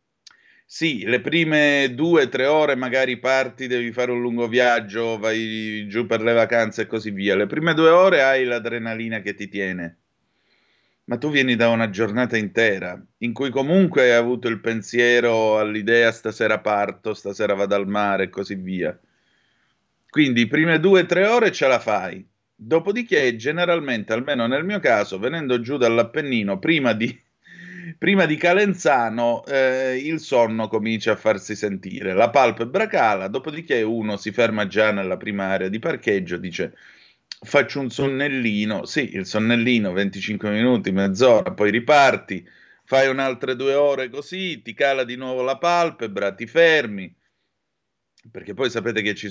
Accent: native